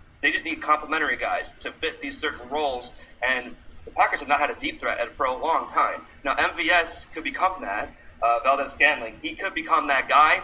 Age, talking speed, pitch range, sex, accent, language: 30-49, 205 wpm, 115-150 Hz, male, American, English